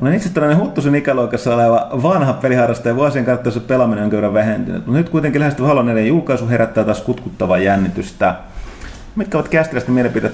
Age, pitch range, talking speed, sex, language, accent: 30-49, 105-135 Hz, 175 wpm, male, Finnish, native